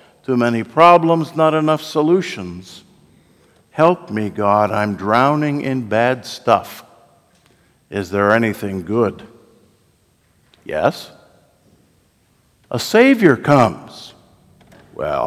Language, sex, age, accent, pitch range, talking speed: English, male, 60-79, American, 120-160 Hz, 90 wpm